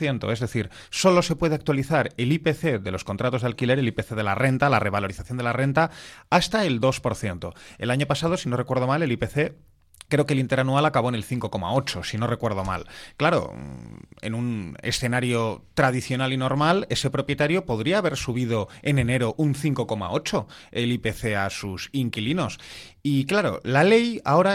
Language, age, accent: Spanish, 30-49, Spanish